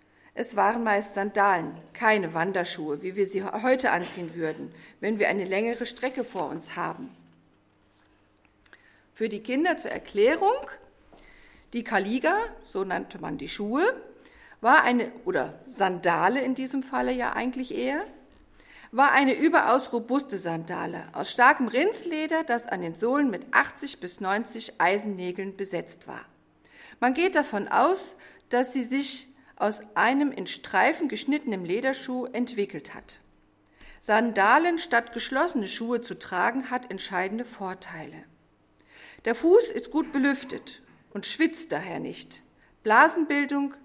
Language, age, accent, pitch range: English, 50-69, German, 190-270 Hz